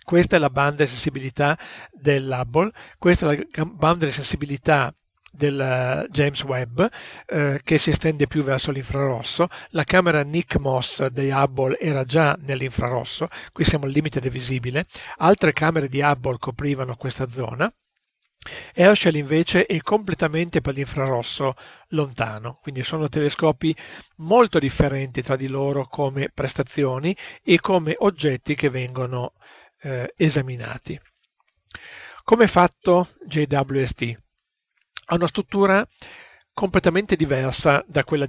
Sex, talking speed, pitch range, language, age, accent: male, 125 wpm, 135-165 Hz, Italian, 40-59, native